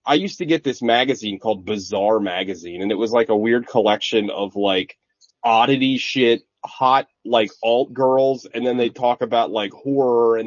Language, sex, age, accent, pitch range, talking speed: English, male, 30-49, American, 110-145 Hz, 185 wpm